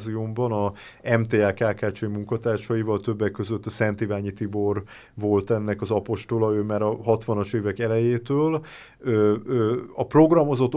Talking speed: 125 wpm